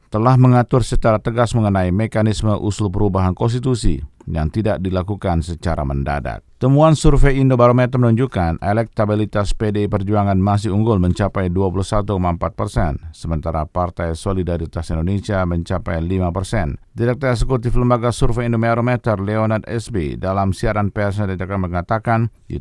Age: 50-69